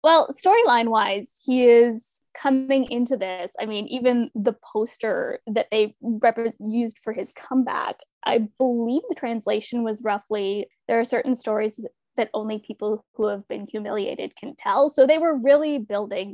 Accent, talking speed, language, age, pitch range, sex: American, 155 wpm, English, 10-29, 215-265 Hz, female